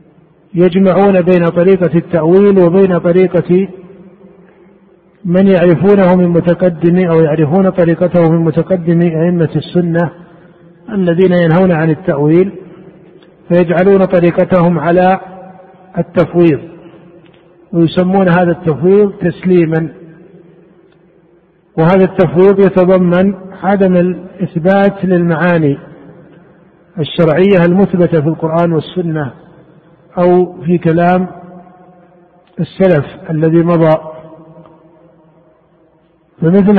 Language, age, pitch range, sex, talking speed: Arabic, 50-69, 165-185 Hz, male, 75 wpm